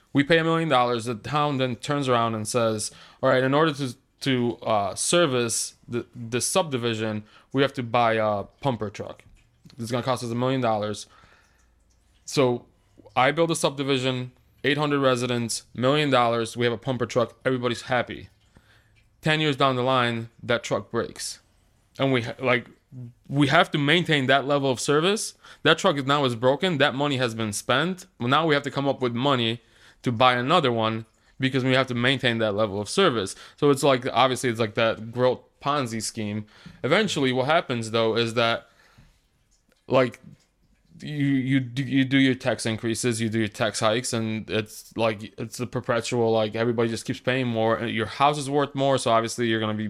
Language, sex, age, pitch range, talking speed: English, male, 20-39, 115-135 Hz, 190 wpm